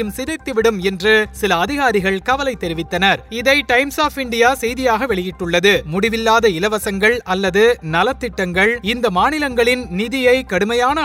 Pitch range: 205-260 Hz